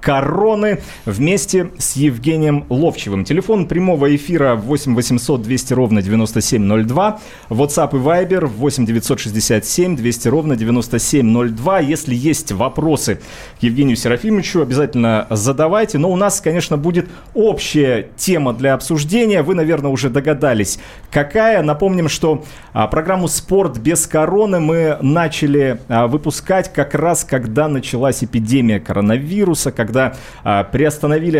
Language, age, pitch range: Russian, 30-49, 120-165 Hz